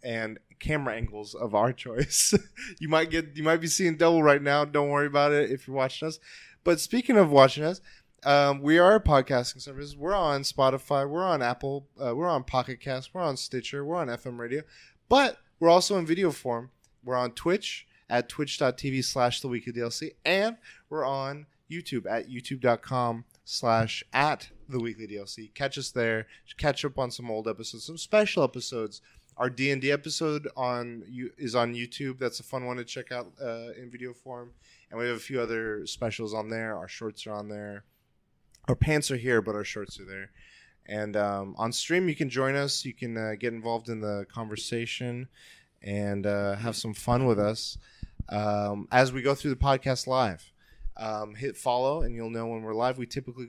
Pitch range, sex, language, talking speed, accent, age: 115-140 Hz, male, English, 195 wpm, American, 20-39